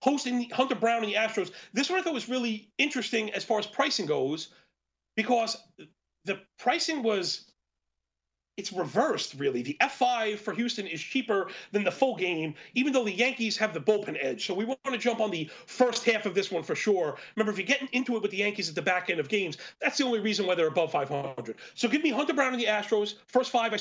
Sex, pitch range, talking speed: male, 195-245 Hz, 230 wpm